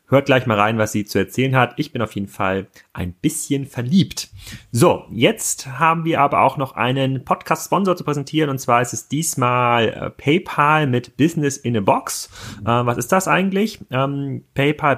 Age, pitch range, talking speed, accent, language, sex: 30-49, 110-145 Hz, 185 wpm, German, German, male